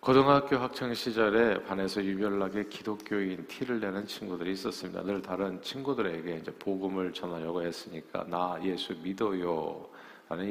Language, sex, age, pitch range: Korean, male, 50-69, 95-120 Hz